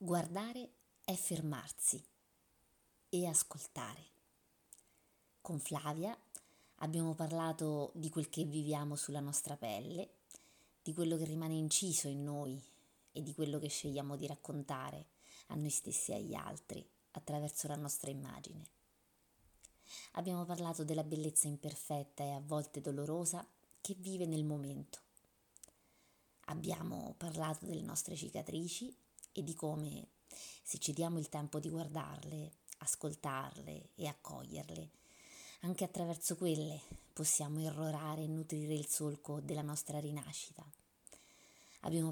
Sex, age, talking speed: female, 30-49, 120 wpm